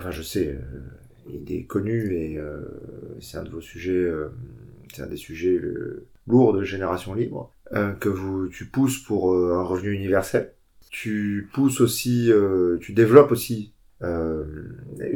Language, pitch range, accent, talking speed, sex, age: French, 100-125 Hz, French, 160 wpm, male, 30-49